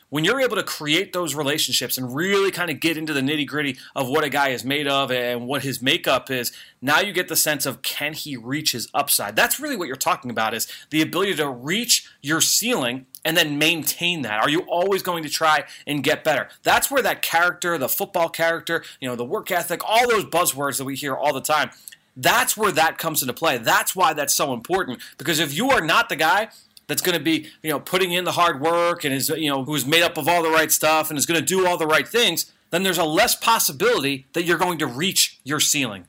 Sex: male